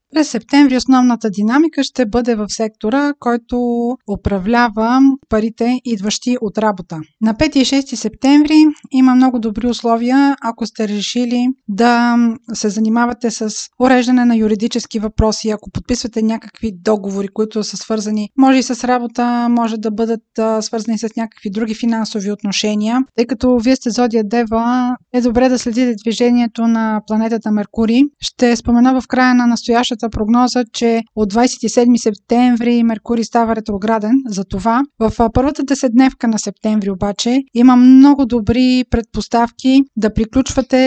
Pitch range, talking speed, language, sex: 220-255 Hz, 140 wpm, Bulgarian, female